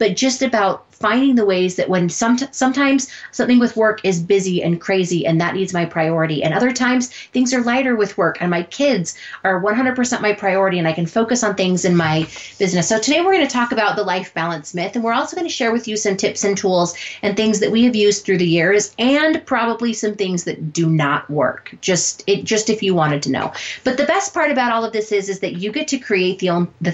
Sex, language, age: female, English, 30-49